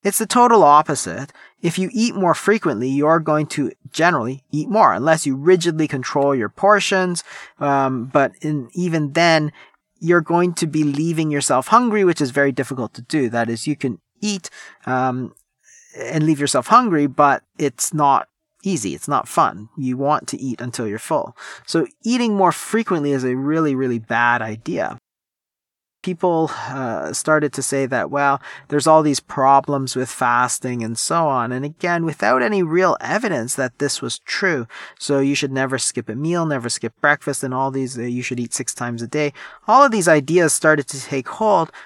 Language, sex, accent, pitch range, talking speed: English, male, American, 130-170 Hz, 185 wpm